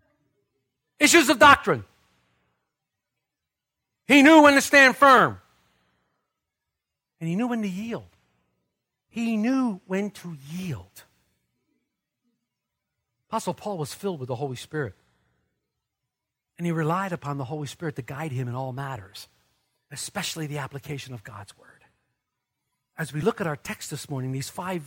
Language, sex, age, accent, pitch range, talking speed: English, male, 50-69, American, 150-240 Hz, 140 wpm